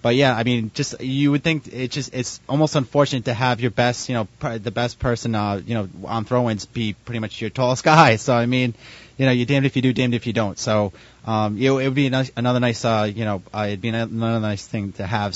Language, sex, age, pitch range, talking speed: English, male, 20-39, 105-120 Hz, 265 wpm